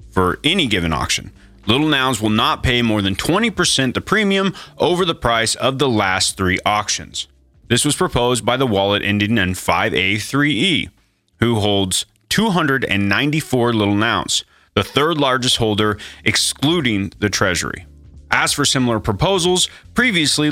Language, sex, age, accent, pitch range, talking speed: English, male, 30-49, American, 100-145 Hz, 140 wpm